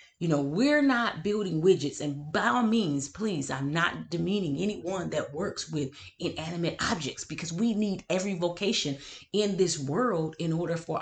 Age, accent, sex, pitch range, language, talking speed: 30-49, American, female, 145-200 Hz, English, 170 wpm